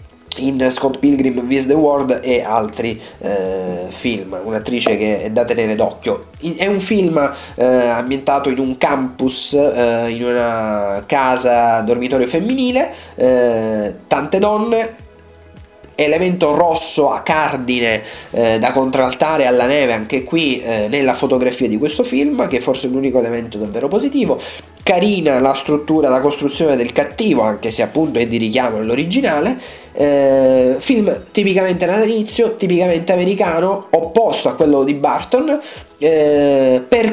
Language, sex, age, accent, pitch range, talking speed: Italian, male, 30-49, native, 120-165 Hz, 135 wpm